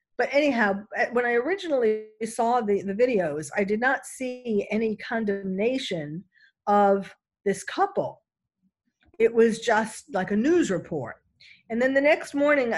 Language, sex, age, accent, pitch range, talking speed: English, female, 50-69, American, 190-265 Hz, 140 wpm